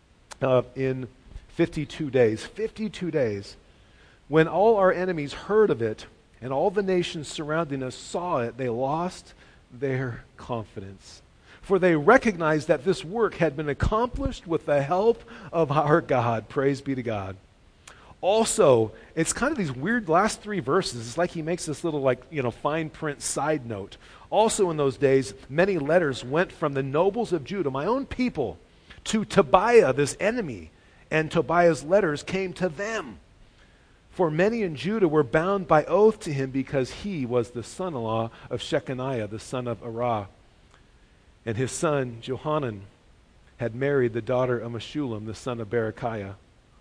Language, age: English, 40-59